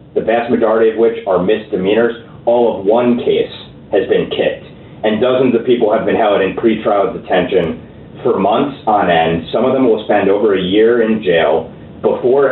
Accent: American